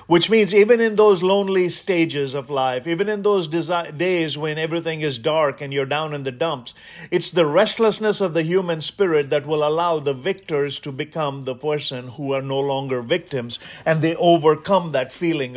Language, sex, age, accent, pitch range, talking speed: English, male, 50-69, Indian, 150-195 Hz, 190 wpm